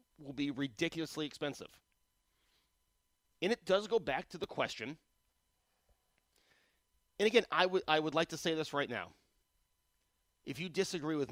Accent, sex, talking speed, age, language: American, male, 150 wpm, 30-49, English